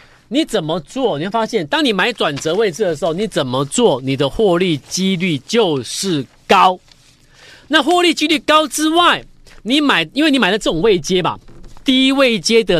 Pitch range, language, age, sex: 160-250 Hz, Chinese, 40-59, male